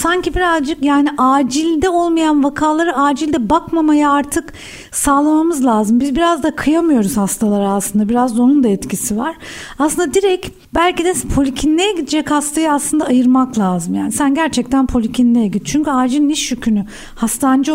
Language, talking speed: Turkish, 145 wpm